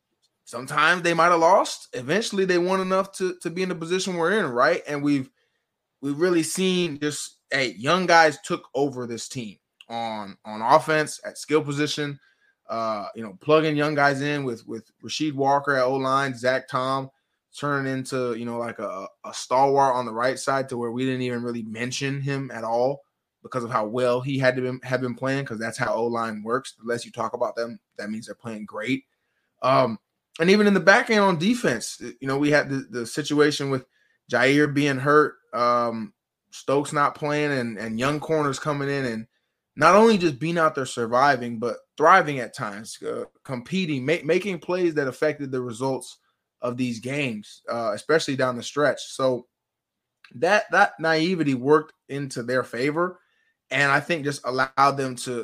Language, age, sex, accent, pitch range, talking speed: English, 20-39, male, American, 125-155 Hz, 190 wpm